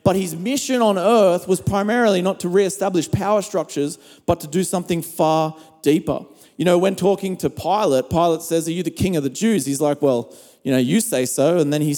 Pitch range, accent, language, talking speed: 145-185 Hz, Australian, English, 220 wpm